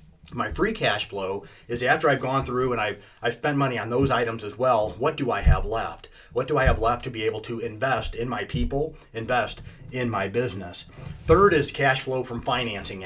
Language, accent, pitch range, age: English, American, 105-130 Hz, 30-49